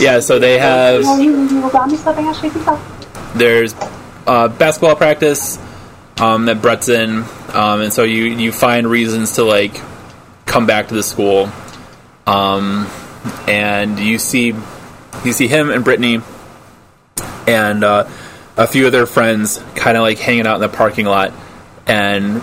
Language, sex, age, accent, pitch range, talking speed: English, male, 20-39, American, 105-120 Hz, 140 wpm